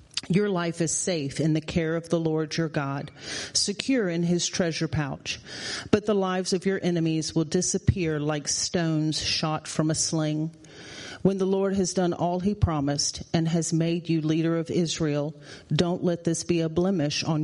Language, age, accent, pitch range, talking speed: English, 40-59, American, 150-175 Hz, 180 wpm